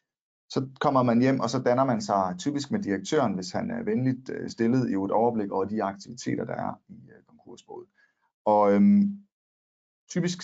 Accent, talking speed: native, 170 wpm